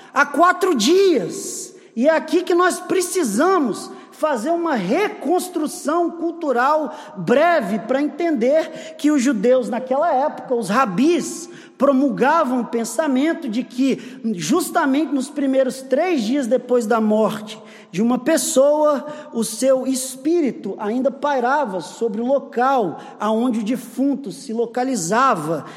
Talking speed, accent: 120 wpm, Brazilian